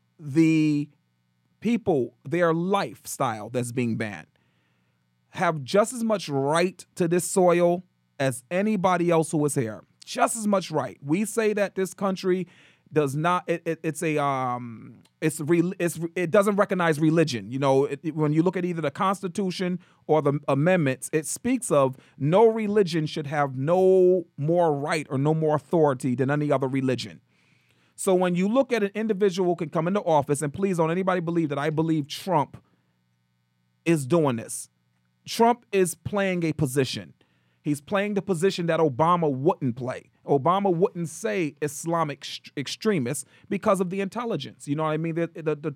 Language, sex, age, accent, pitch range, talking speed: English, male, 40-59, American, 140-185 Hz, 170 wpm